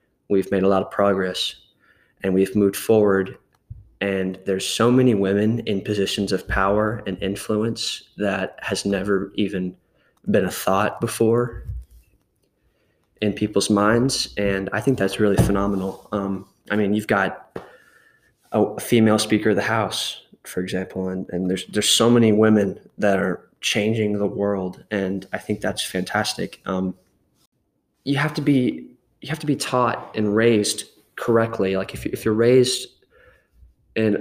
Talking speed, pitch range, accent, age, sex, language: 155 wpm, 95-110 Hz, American, 20-39, male, English